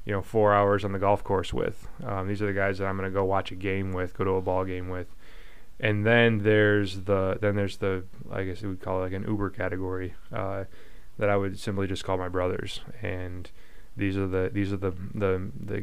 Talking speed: 240 wpm